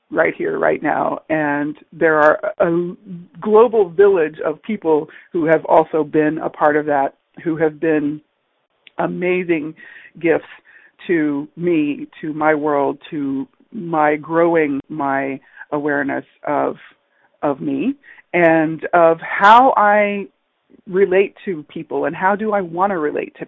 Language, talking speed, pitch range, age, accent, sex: English, 135 wpm, 155-225 Hz, 40-59, American, female